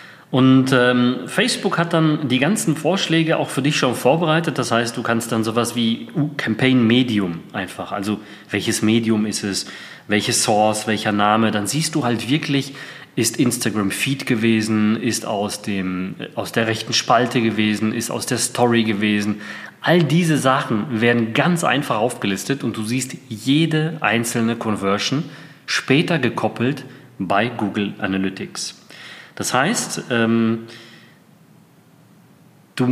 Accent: German